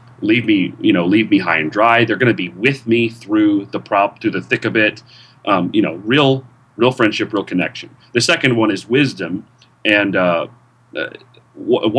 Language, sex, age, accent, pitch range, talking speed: English, male, 30-49, American, 110-135 Hz, 195 wpm